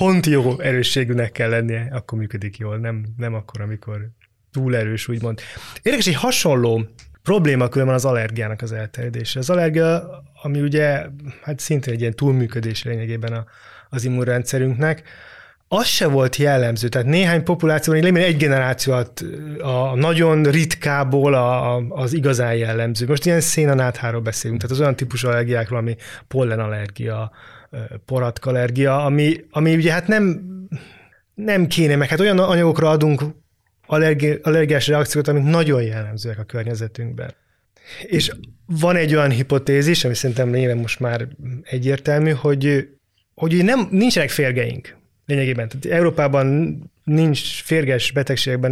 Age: 20-39